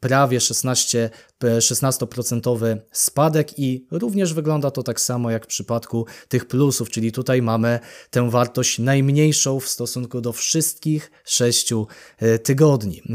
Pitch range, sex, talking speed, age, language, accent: 115-130 Hz, male, 125 wpm, 20-39, Polish, native